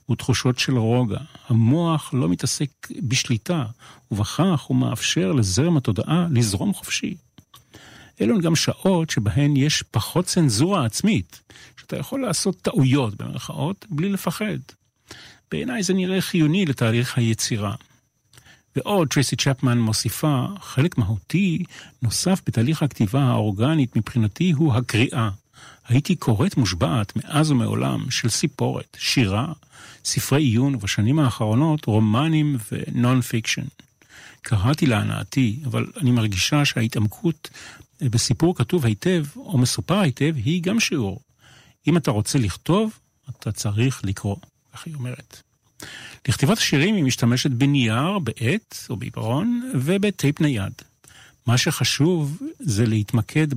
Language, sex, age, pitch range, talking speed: Hebrew, male, 40-59, 115-155 Hz, 115 wpm